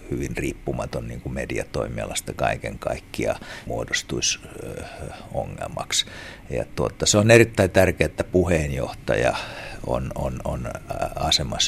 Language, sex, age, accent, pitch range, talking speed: Finnish, male, 60-79, native, 80-100 Hz, 80 wpm